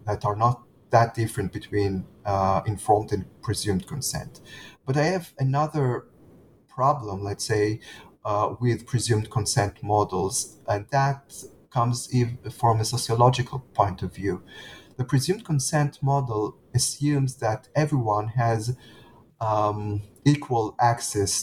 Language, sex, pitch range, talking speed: English, male, 105-125 Hz, 120 wpm